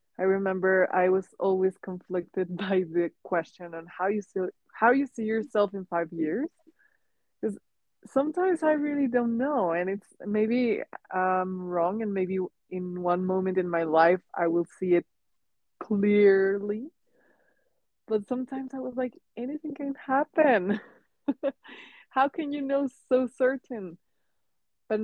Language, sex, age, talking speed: English, female, 20-39, 145 wpm